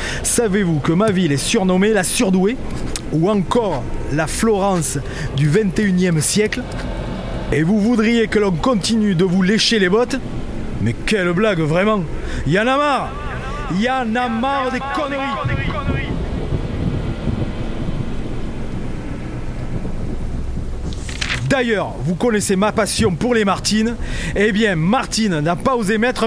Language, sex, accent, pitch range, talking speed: French, male, French, 145-215 Hz, 125 wpm